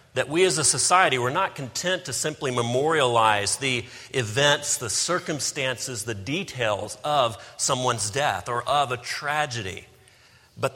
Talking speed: 140 wpm